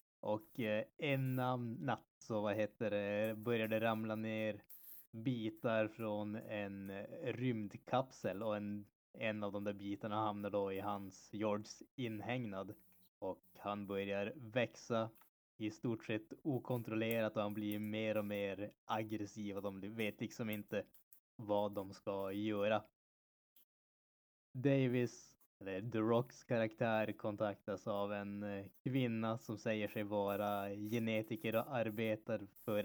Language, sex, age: Swedish, male, 20-39